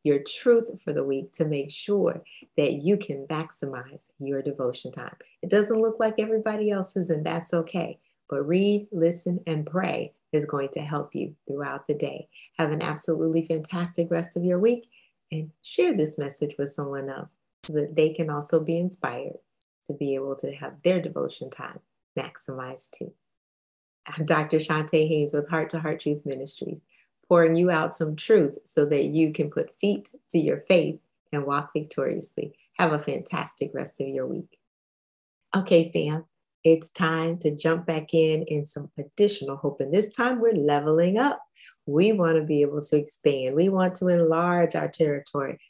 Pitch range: 145-175 Hz